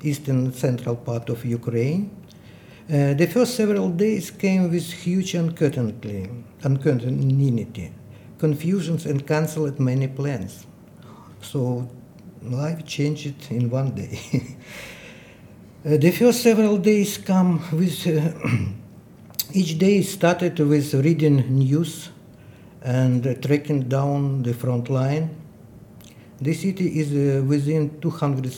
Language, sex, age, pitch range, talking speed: English, male, 60-79, 125-155 Hz, 110 wpm